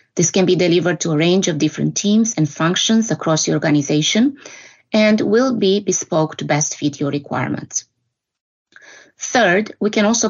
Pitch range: 150-195 Hz